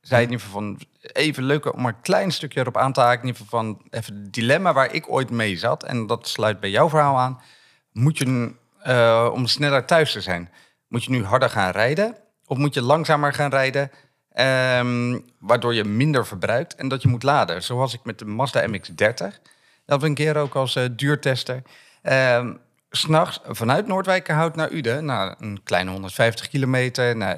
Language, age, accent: Dutch, 40-59, Dutch